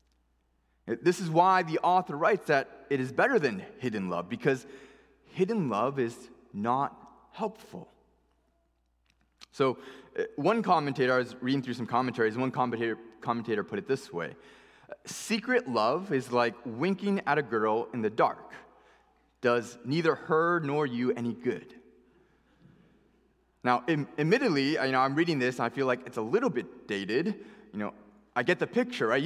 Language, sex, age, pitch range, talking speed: English, male, 20-39, 120-175 Hz, 155 wpm